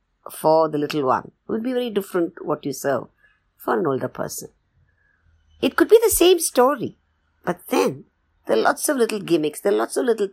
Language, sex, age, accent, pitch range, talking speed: English, male, 50-69, Indian, 150-245 Hz, 200 wpm